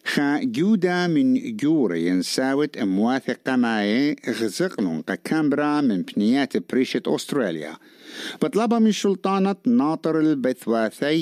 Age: 60-79